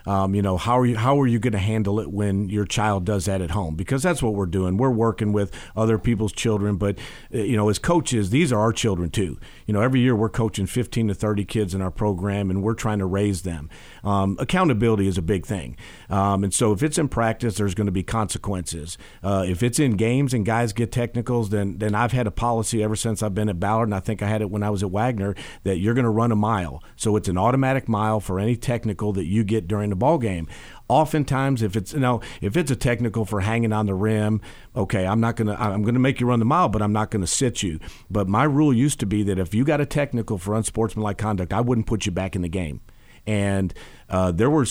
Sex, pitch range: male, 100-115 Hz